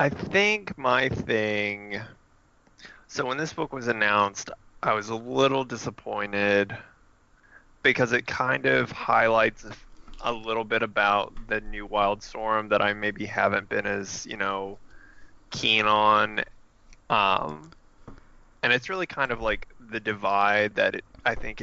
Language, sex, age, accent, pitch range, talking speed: English, male, 20-39, American, 100-115 Hz, 140 wpm